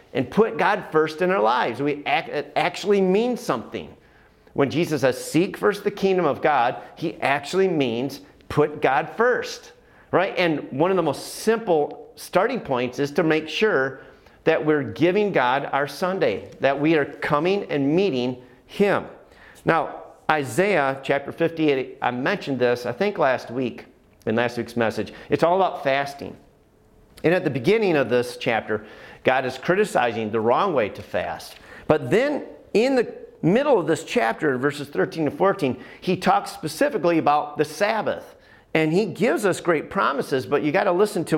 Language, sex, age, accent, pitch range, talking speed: English, male, 40-59, American, 140-195 Hz, 170 wpm